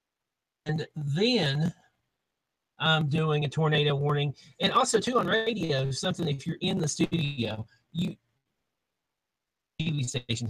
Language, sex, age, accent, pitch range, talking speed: English, male, 40-59, American, 130-170 Hz, 120 wpm